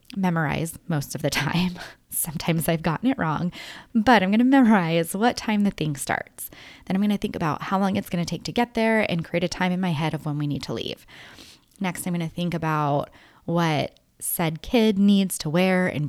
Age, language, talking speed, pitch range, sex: 20-39, English, 230 wpm, 155-200 Hz, female